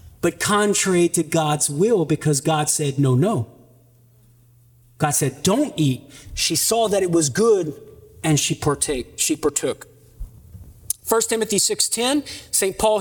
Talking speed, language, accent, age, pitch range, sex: 140 wpm, English, American, 40-59, 140-225 Hz, male